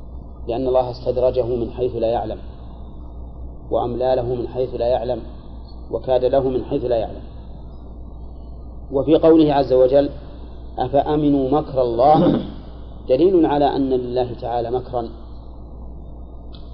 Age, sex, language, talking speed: 40-59, male, Arabic, 110 wpm